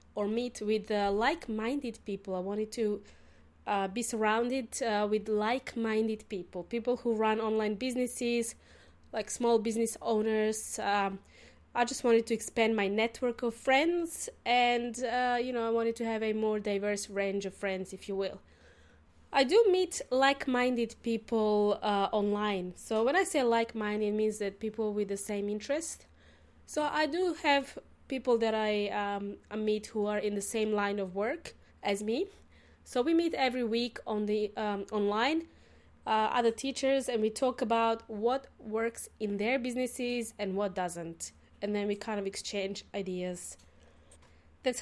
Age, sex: 20-39, female